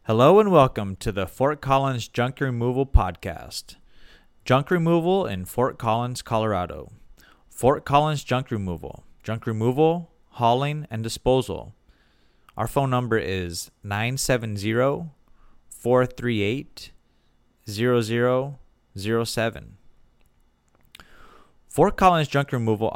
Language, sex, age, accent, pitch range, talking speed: English, male, 30-49, American, 105-135 Hz, 90 wpm